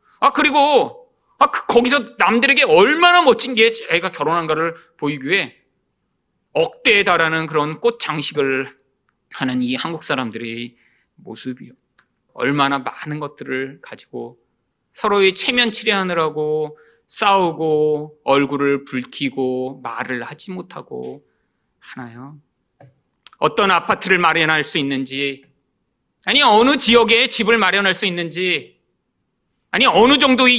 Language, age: Korean, 30-49